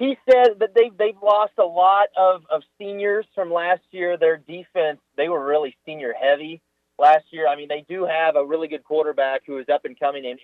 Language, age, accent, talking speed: English, 30-49, American, 215 wpm